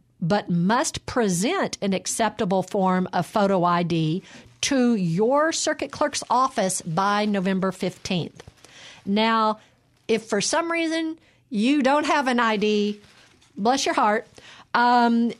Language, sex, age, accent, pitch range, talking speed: English, female, 50-69, American, 190-255 Hz, 120 wpm